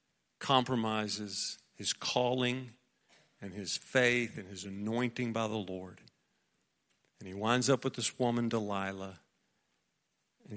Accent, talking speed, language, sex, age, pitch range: American, 120 wpm, English, male, 50-69, 105-130 Hz